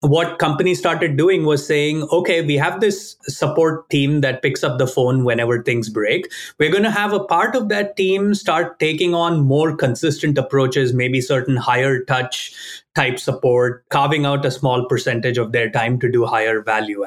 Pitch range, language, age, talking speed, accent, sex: 130-170 Hz, English, 30-49, 185 wpm, Indian, male